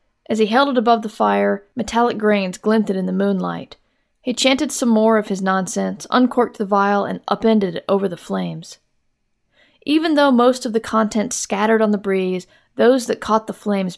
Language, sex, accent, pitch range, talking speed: English, female, American, 195-230 Hz, 190 wpm